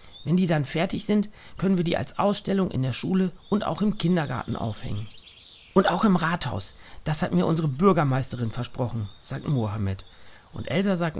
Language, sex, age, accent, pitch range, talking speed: German, male, 40-59, German, 115-185 Hz, 175 wpm